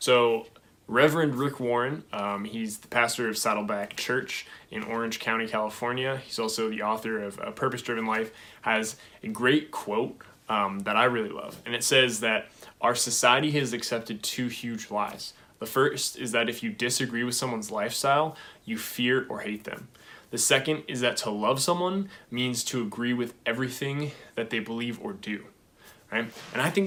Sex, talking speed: male, 180 wpm